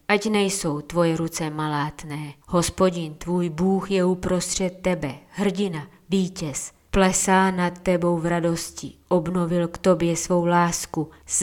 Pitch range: 155-180 Hz